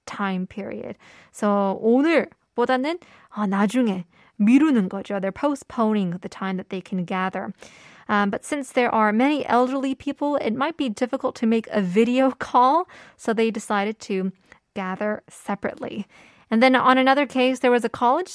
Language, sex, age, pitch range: Korean, female, 20-39, 205-260 Hz